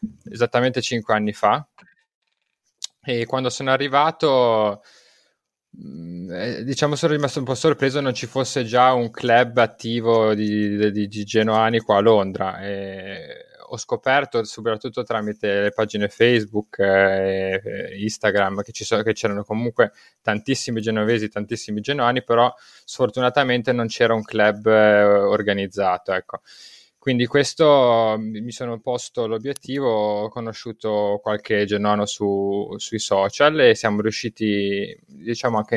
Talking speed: 120 wpm